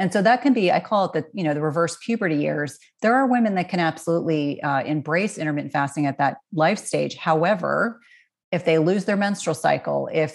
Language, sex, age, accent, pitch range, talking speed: English, female, 30-49, American, 150-185 Hz, 215 wpm